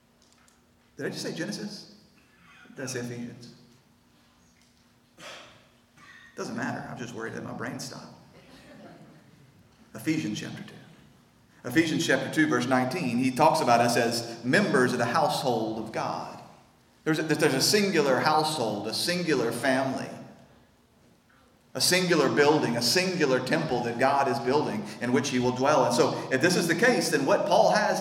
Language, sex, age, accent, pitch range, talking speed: English, male, 40-59, American, 120-155 Hz, 155 wpm